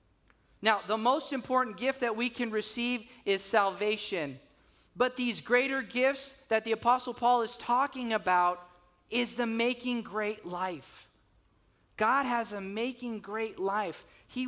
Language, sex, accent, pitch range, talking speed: English, male, American, 180-240 Hz, 140 wpm